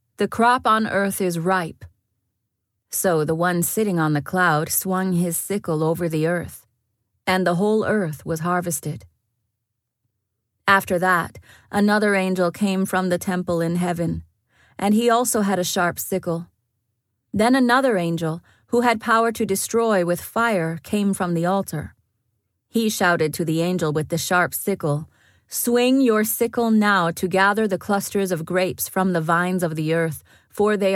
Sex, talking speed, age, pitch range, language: female, 160 wpm, 30-49, 155-190 Hz, English